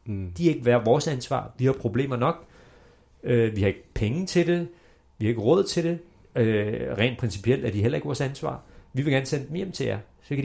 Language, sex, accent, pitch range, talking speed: Danish, male, native, 115-140 Hz, 240 wpm